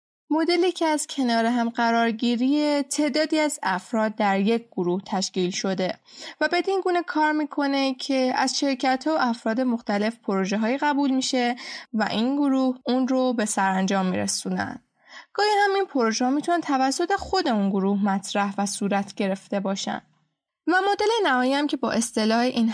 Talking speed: 150 wpm